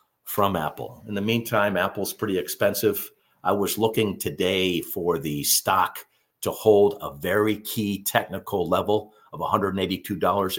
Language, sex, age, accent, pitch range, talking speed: English, male, 50-69, American, 95-115 Hz, 135 wpm